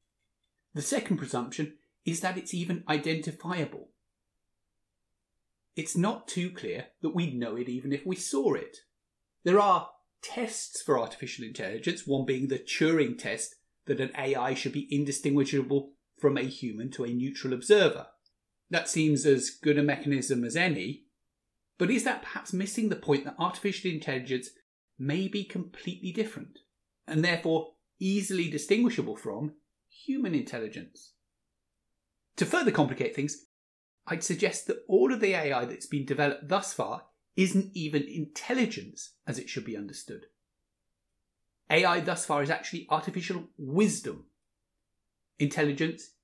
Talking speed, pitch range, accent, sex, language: 140 wpm, 140-190 Hz, British, male, English